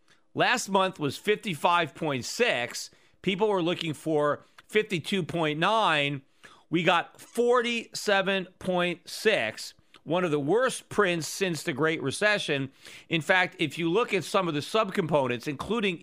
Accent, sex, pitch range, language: American, male, 150-195 Hz, English